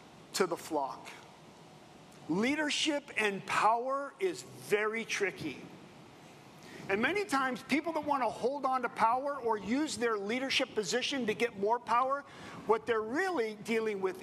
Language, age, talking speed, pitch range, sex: English, 50-69, 145 wpm, 205-275 Hz, male